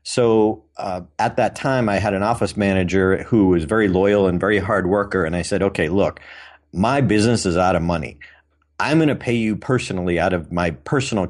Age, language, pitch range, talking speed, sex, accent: 50-69, English, 90-110 Hz, 205 wpm, male, American